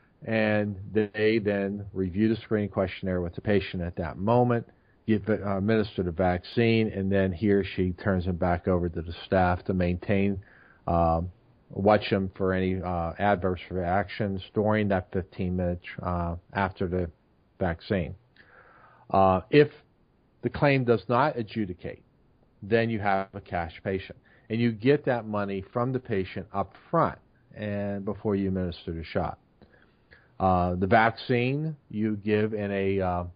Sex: male